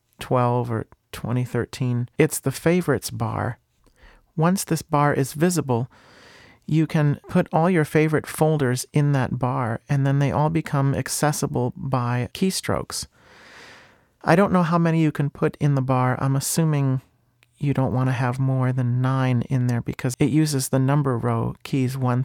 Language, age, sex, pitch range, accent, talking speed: English, 40-59, male, 125-145 Hz, American, 165 wpm